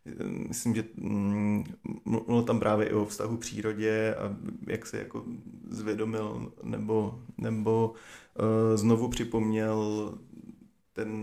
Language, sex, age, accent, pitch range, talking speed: Czech, male, 30-49, native, 105-110 Hz, 95 wpm